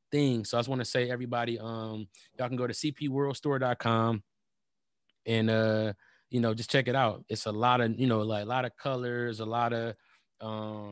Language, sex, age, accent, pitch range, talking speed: English, male, 20-39, American, 115-130 Hz, 200 wpm